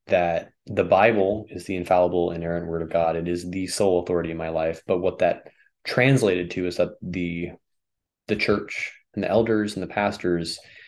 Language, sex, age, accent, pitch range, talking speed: English, male, 20-39, American, 85-105 Hz, 195 wpm